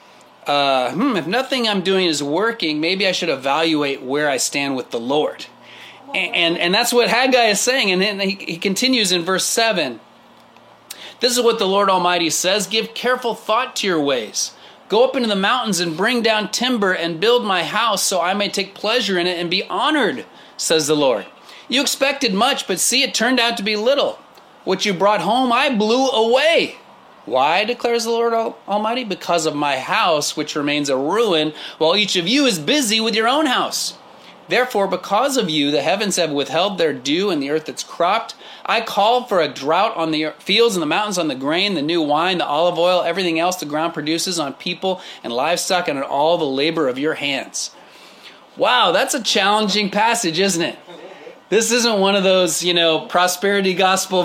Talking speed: 200 wpm